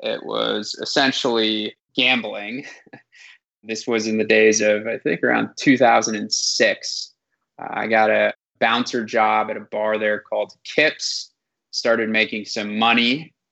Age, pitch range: 20-39, 110-115 Hz